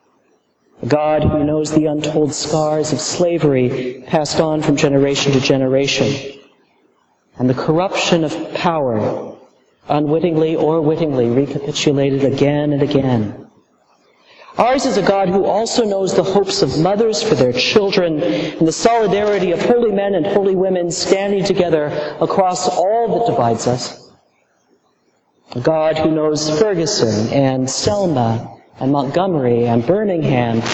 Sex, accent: male, American